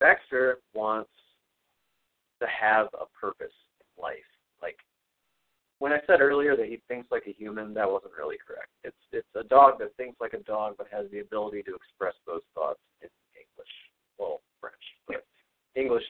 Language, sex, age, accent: English, male, 50-69, American